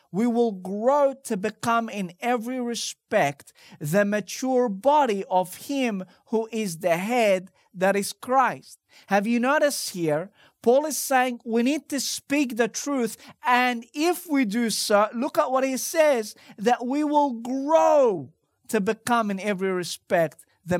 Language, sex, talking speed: English, male, 155 wpm